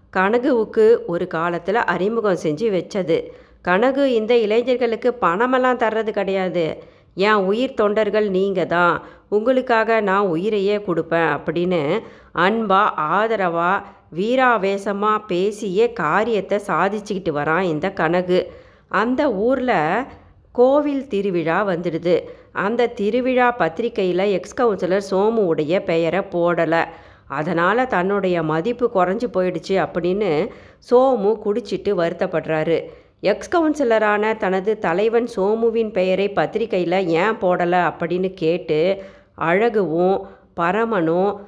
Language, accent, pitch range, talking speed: Tamil, native, 180-230 Hz, 95 wpm